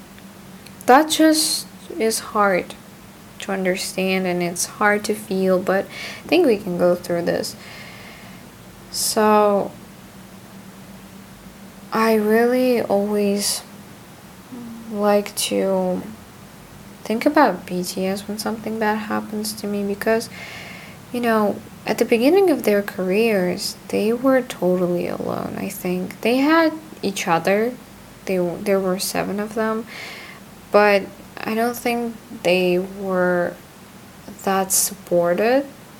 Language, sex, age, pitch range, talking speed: English, female, 10-29, 185-225 Hz, 110 wpm